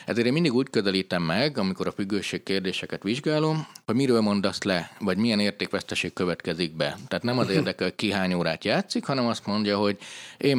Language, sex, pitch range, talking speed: Hungarian, male, 90-110 Hz, 195 wpm